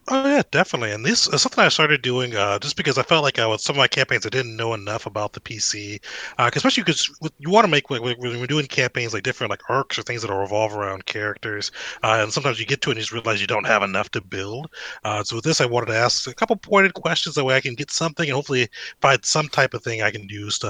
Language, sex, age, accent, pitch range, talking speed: English, male, 30-49, American, 105-140 Hz, 290 wpm